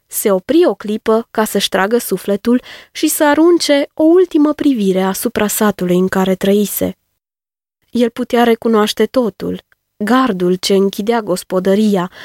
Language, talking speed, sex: Romanian, 130 wpm, female